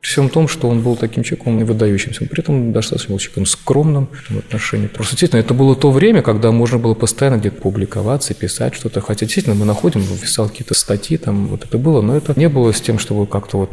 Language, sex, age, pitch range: Russian, male, 30-49, 105-135 Hz